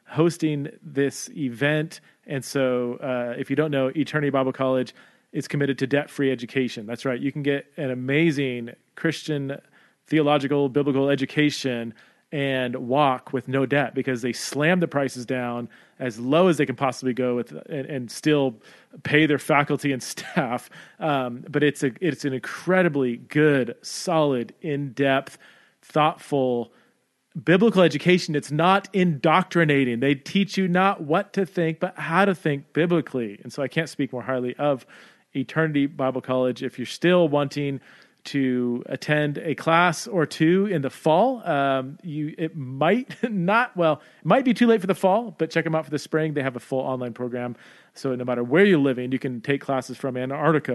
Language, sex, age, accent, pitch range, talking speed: English, male, 30-49, American, 130-160 Hz, 175 wpm